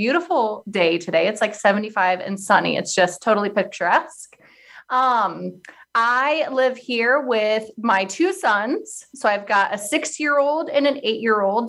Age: 20-39